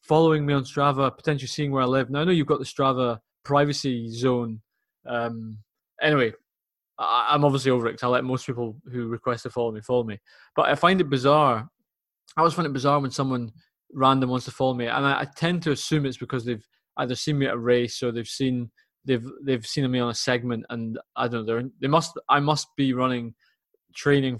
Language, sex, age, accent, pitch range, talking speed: English, male, 20-39, British, 120-145 Hz, 210 wpm